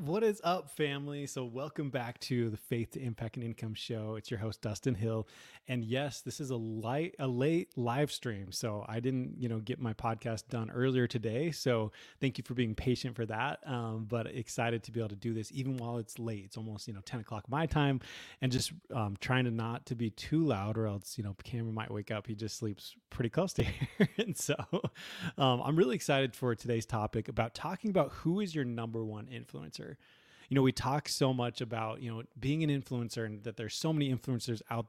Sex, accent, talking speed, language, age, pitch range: male, American, 225 wpm, English, 20-39, 115-145 Hz